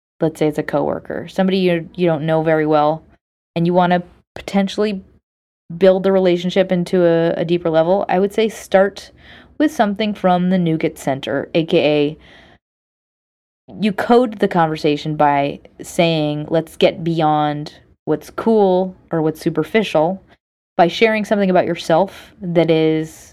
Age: 30-49